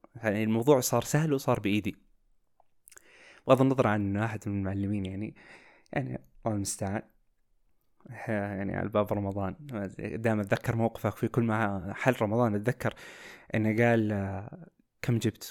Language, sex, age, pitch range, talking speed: Arabic, male, 20-39, 105-130 Hz, 130 wpm